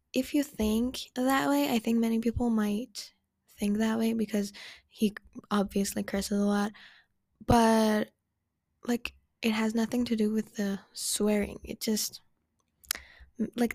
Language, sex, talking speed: English, female, 140 wpm